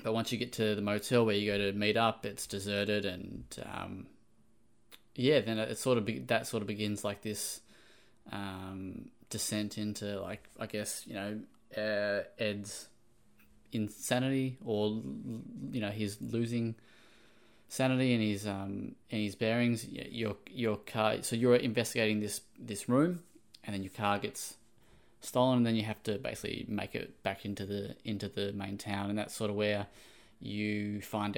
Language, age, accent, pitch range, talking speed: English, 20-39, Australian, 105-115 Hz, 170 wpm